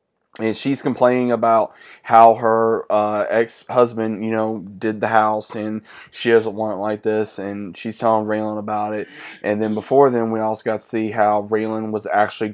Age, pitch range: 20-39, 105-115 Hz